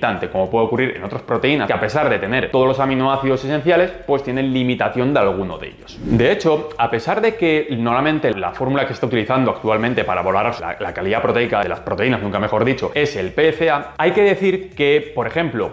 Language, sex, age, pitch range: Spanish, male, 20-39, 125-165 Hz